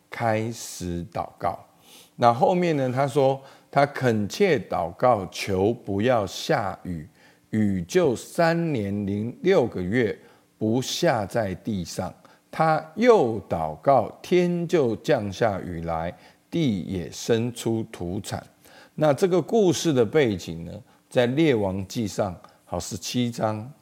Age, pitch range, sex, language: 50-69, 100-150 Hz, male, Chinese